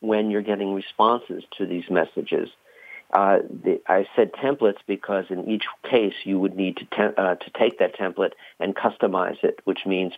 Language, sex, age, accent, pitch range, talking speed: English, male, 50-69, American, 95-105 Hz, 185 wpm